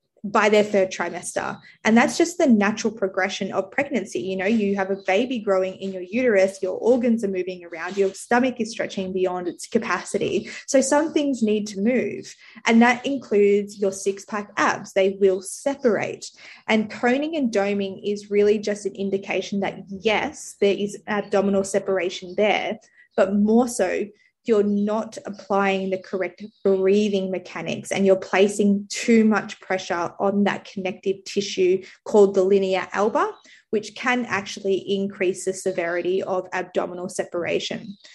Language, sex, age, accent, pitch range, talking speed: English, female, 20-39, Australian, 190-225 Hz, 155 wpm